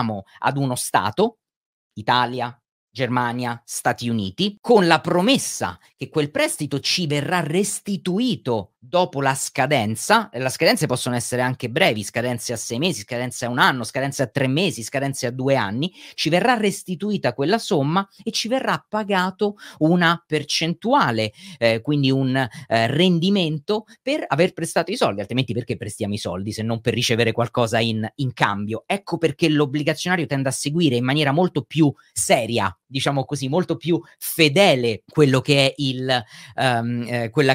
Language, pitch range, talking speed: Italian, 125-170 Hz, 155 wpm